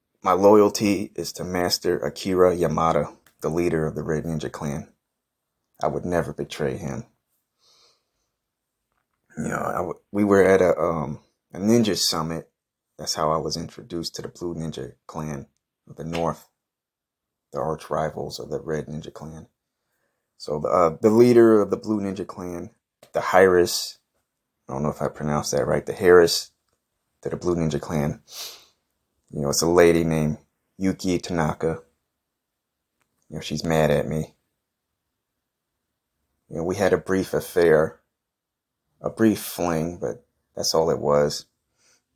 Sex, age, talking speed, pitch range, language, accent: male, 30-49, 150 wpm, 75-95 Hz, English, American